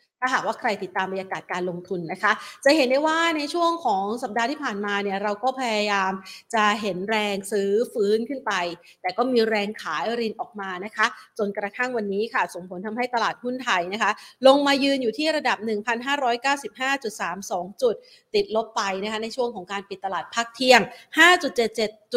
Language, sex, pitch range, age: Thai, female, 210-255 Hz, 30-49